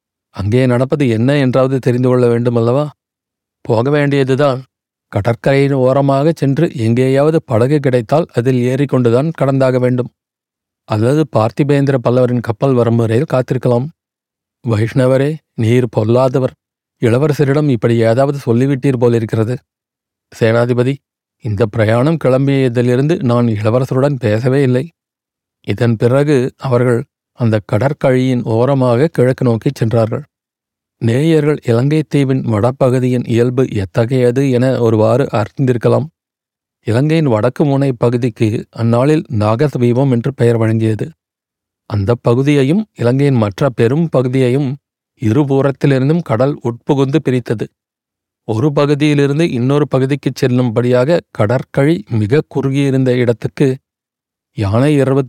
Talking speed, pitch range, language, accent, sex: 95 wpm, 120-140 Hz, Tamil, native, male